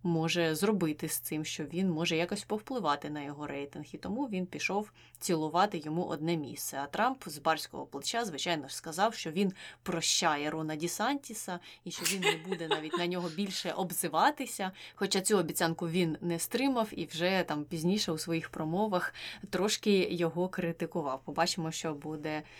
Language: Ukrainian